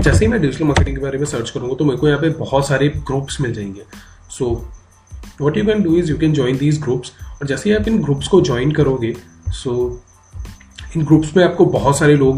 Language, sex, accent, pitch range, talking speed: English, male, Indian, 115-150 Hz, 235 wpm